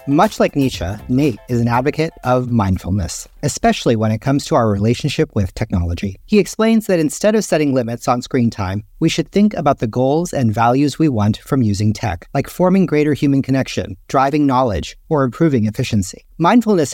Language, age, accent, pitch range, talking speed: English, 40-59, American, 110-155 Hz, 185 wpm